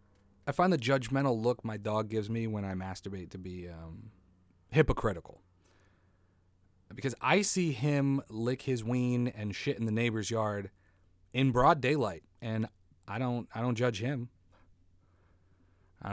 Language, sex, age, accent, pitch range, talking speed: English, male, 30-49, American, 95-125 Hz, 150 wpm